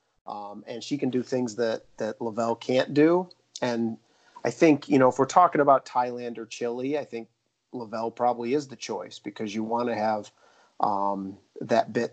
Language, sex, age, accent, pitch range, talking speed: English, male, 40-59, American, 110-125 Hz, 185 wpm